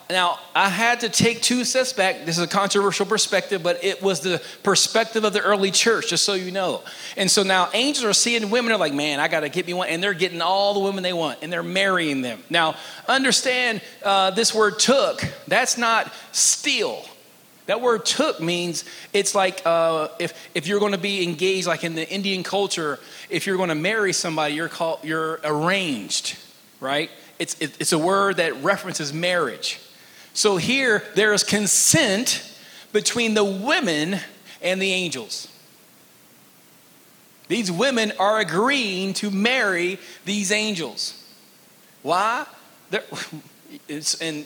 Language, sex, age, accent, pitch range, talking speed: English, male, 30-49, American, 175-225 Hz, 165 wpm